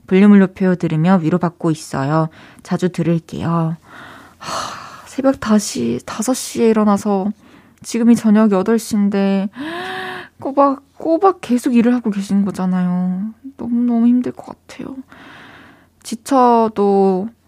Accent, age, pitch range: native, 20-39, 185-235 Hz